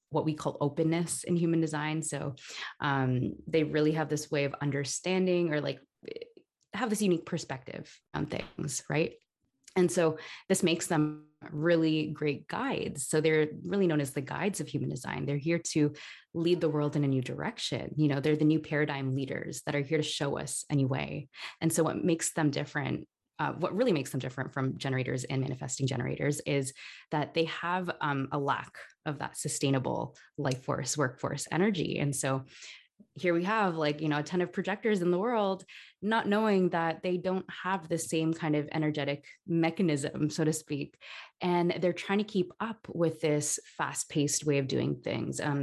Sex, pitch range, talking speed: female, 145-175 Hz, 190 wpm